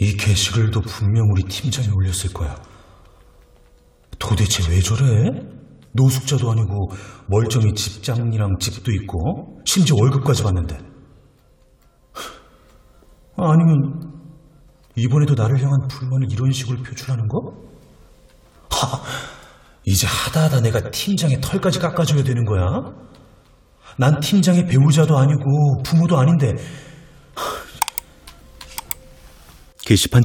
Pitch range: 95-130 Hz